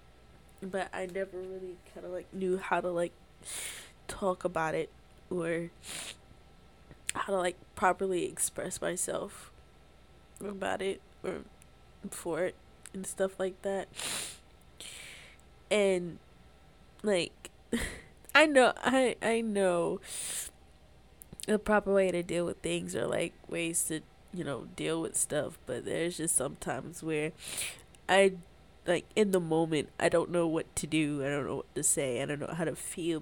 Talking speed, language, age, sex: 150 wpm, English, 10-29, female